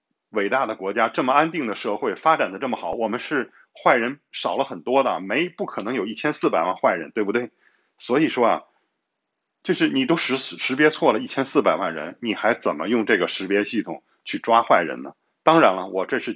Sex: male